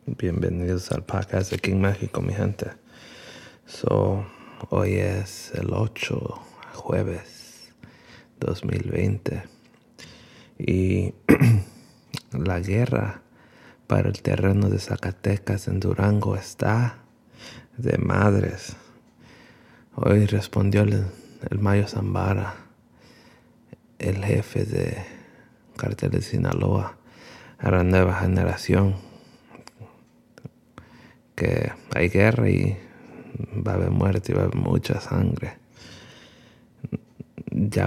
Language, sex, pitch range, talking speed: English, male, 95-115 Hz, 95 wpm